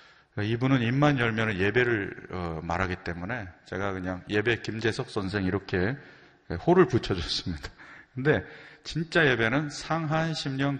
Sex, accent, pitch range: male, native, 95-135 Hz